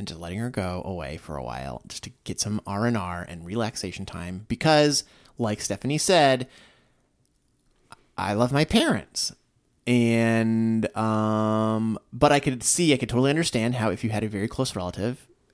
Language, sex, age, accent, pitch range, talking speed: English, male, 30-49, American, 105-155 Hz, 170 wpm